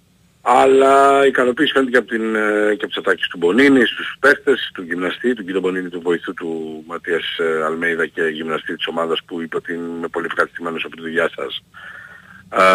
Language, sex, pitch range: Greek, male, 95-130 Hz